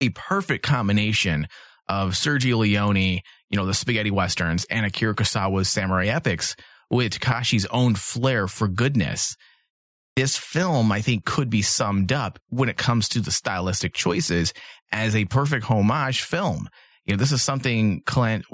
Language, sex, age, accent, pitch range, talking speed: English, male, 30-49, American, 95-125 Hz, 155 wpm